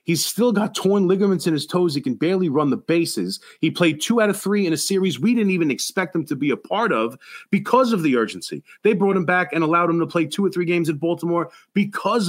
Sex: male